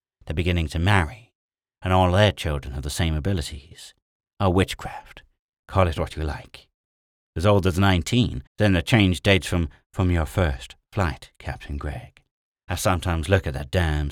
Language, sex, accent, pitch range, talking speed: English, male, British, 75-95 Hz, 170 wpm